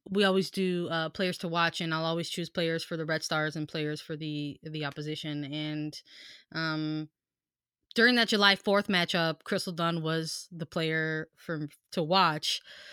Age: 20-39